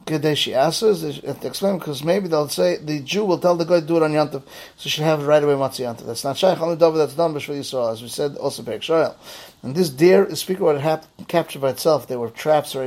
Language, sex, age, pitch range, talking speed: English, male, 30-49, 140-170 Hz, 245 wpm